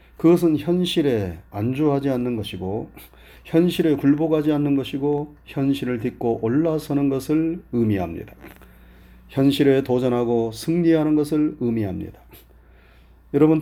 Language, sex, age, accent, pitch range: Korean, male, 30-49, native, 100-155 Hz